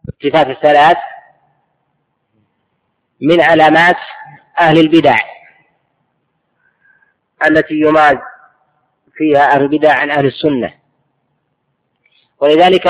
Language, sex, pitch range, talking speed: Arabic, female, 155-170 Hz, 70 wpm